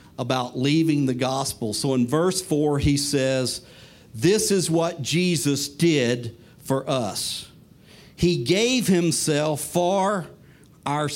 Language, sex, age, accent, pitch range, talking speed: English, male, 50-69, American, 145-190 Hz, 120 wpm